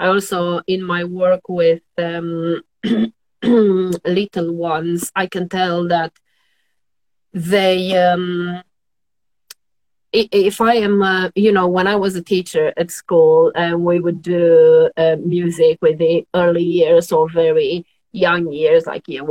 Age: 30-49